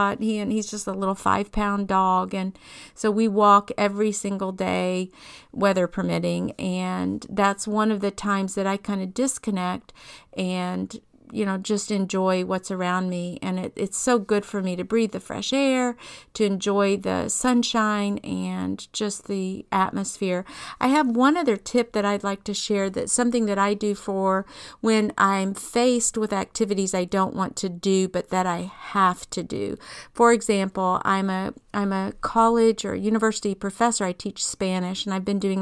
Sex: female